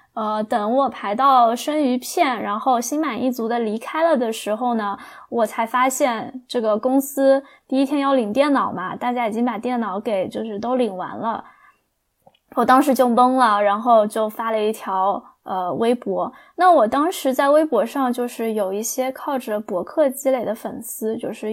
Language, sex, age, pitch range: Chinese, female, 20-39, 230-285 Hz